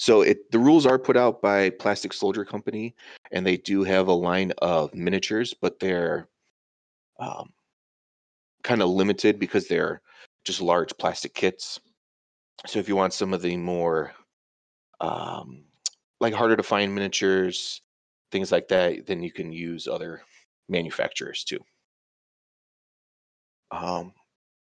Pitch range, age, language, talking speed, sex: 85-110 Hz, 30-49, English, 130 wpm, male